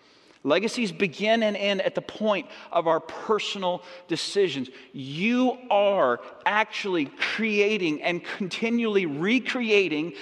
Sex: male